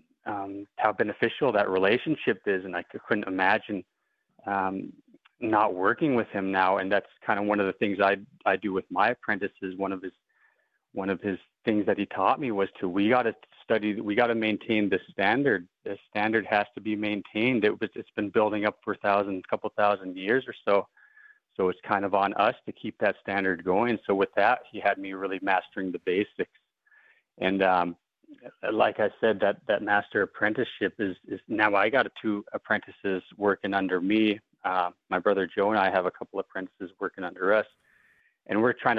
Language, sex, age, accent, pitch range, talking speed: English, male, 30-49, American, 100-125 Hz, 205 wpm